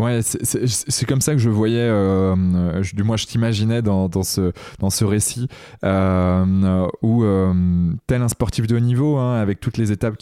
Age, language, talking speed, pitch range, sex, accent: 20-39, French, 170 wpm, 95-115 Hz, male, French